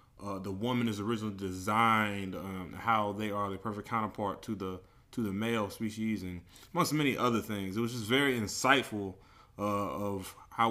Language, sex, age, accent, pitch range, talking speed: English, male, 30-49, American, 100-125 Hz, 180 wpm